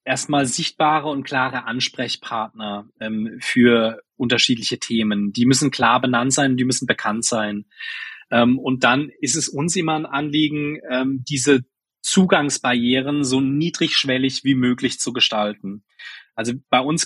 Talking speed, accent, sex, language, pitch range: 135 wpm, German, male, German, 120-140 Hz